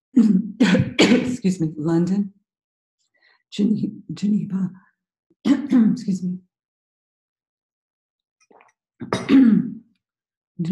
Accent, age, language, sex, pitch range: American, 50-69, English, female, 145-190 Hz